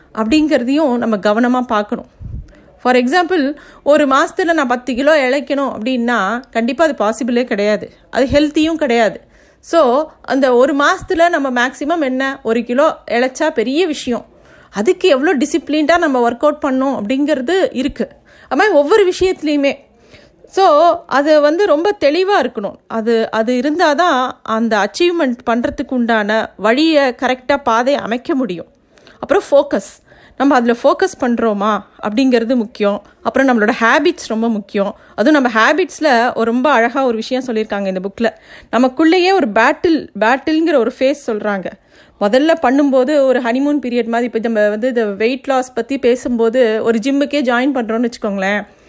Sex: female